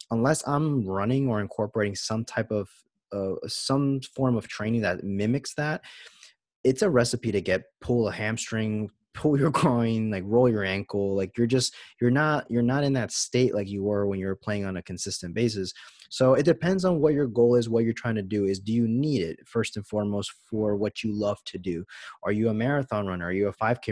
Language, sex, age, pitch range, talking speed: English, male, 20-39, 105-130 Hz, 220 wpm